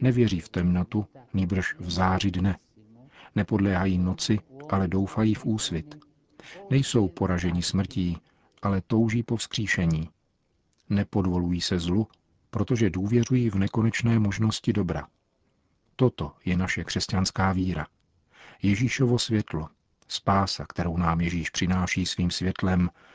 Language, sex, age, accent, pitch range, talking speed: Czech, male, 50-69, native, 90-110 Hz, 110 wpm